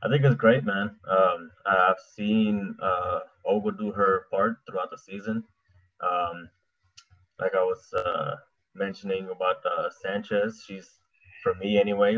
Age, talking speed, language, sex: 20-39, 145 wpm, English, male